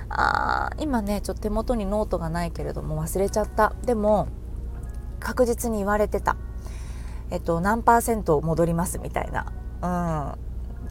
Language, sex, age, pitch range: Japanese, female, 20-39, 140-225 Hz